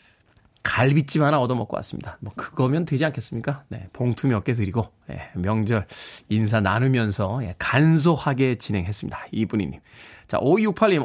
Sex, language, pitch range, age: male, Korean, 125-175 Hz, 20-39